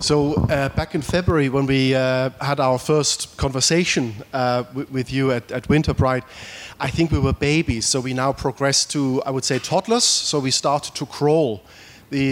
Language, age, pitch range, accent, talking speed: Danish, 30-49, 130-155 Hz, German, 190 wpm